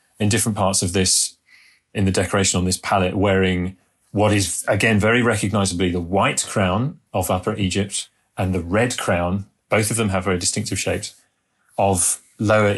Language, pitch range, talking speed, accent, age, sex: English, 95-105 Hz, 170 wpm, British, 30-49, male